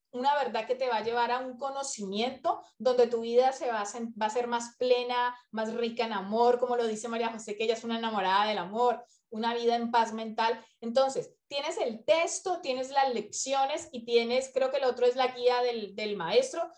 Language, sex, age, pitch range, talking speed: Spanish, female, 20-39, 235-305 Hz, 220 wpm